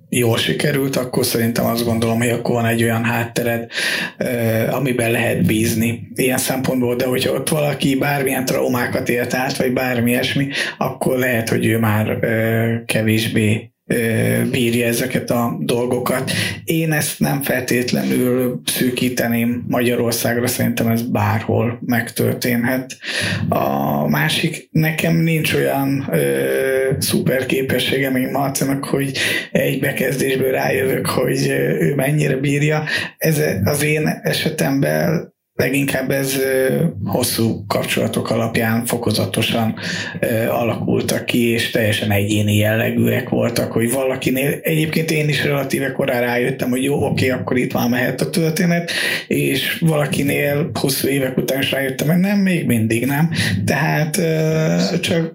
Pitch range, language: 115-140 Hz, Hungarian